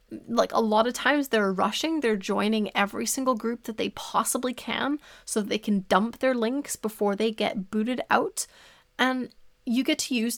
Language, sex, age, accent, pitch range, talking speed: English, female, 20-39, American, 205-245 Hz, 190 wpm